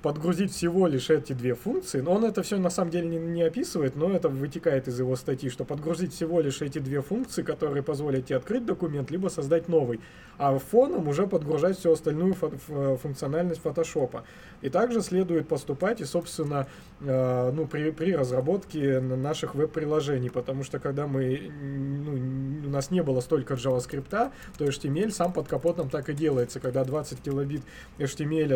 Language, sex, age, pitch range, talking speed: Russian, male, 20-39, 130-165 Hz, 170 wpm